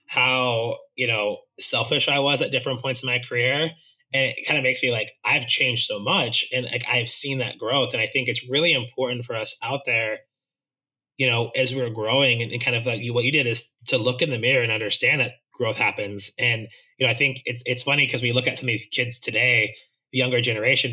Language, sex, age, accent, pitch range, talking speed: English, male, 20-39, American, 120-140 Hz, 240 wpm